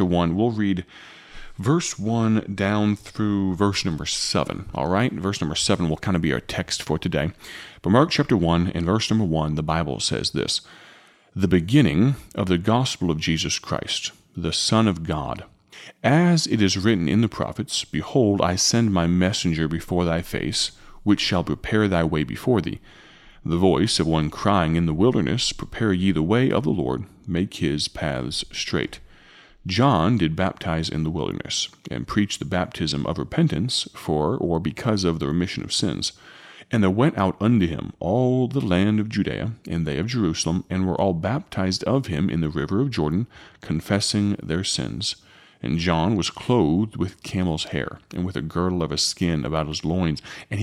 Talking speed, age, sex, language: 185 wpm, 30-49, male, English